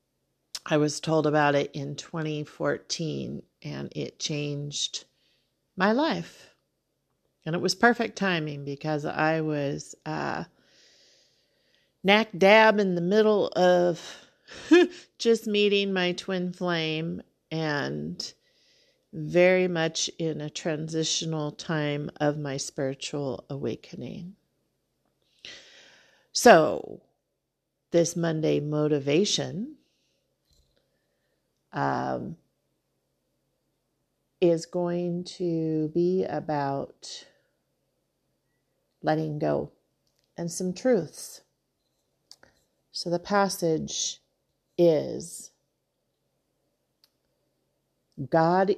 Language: English